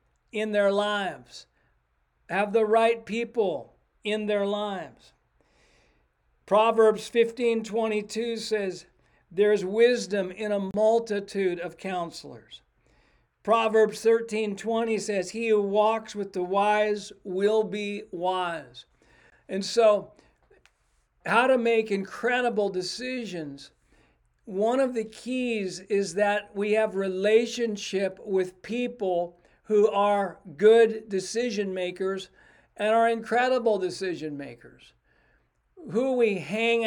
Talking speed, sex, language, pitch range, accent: 105 wpm, male, English, 195-225 Hz, American